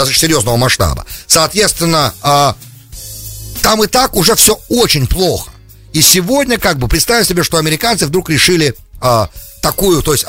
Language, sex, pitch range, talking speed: English, male, 105-175 Hz, 135 wpm